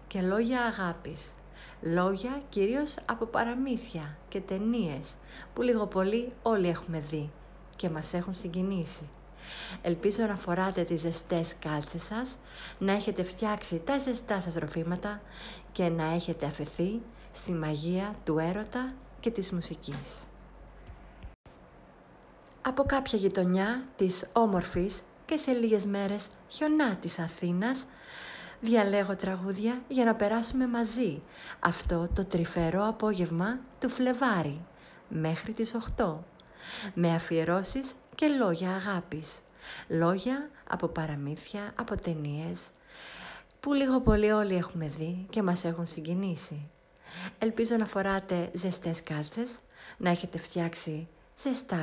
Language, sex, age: Greek, female, 50-69